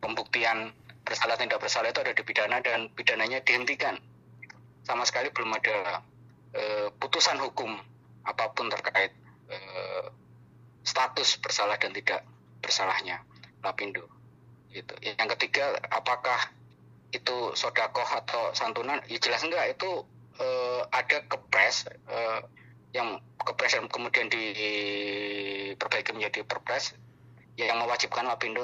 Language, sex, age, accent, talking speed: Indonesian, male, 20-39, native, 115 wpm